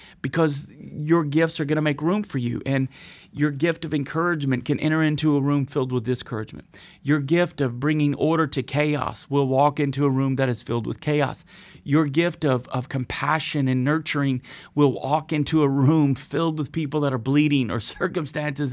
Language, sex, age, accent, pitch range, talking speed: English, male, 40-59, American, 135-160 Hz, 190 wpm